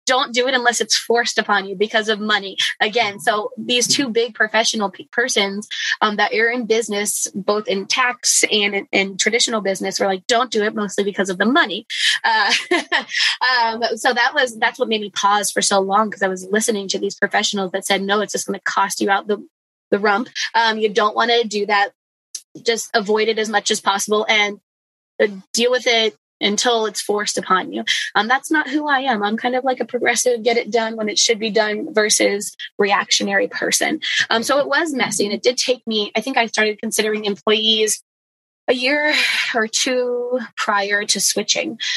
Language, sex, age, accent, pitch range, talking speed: English, female, 20-39, American, 205-235 Hz, 205 wpm